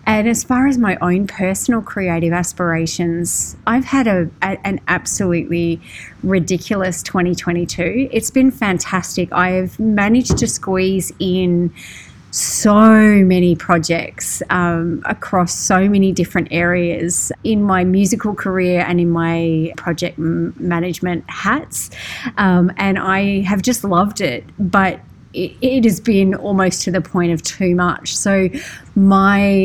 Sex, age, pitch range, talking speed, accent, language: female, 30-49, 175-210 Hz, 130 wpm, Australian, English